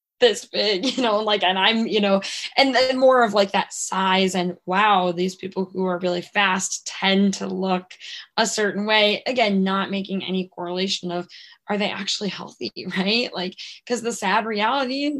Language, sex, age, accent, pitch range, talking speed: English, female, 10-29, American, 180-200 Hz, 180 wpm